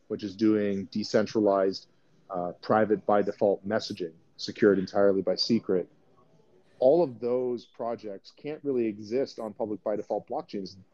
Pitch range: 105-130 Hz